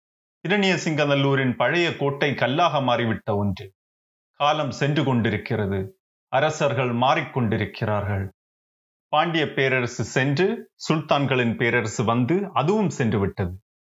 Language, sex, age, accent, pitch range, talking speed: Tamil, male, 30-49, native, 105-145 Hz, 85 wpm